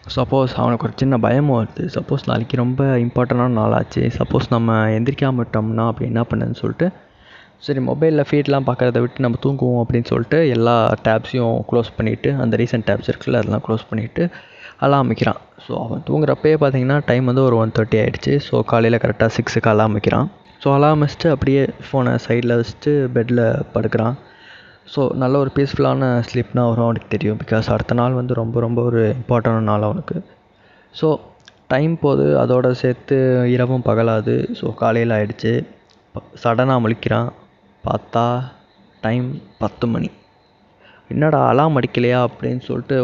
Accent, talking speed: native, 145 wpm